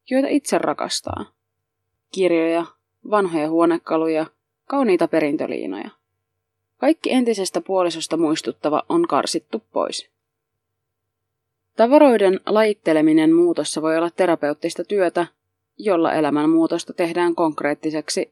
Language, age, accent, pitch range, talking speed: Finnish, 20-39, native, 155-195 Hz, 85 wpm